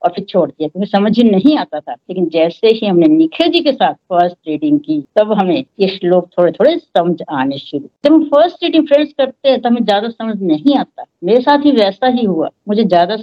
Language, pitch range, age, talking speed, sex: Hindi, 180-275 Hz, 60-79, 230 wpm, female